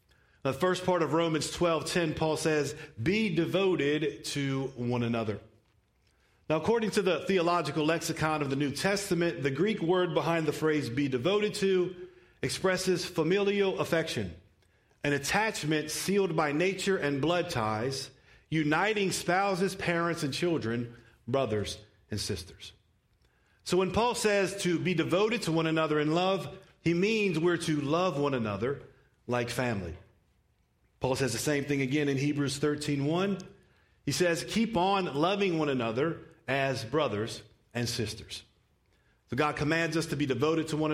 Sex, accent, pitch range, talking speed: male, American, 120-175 Hz, 150 wpm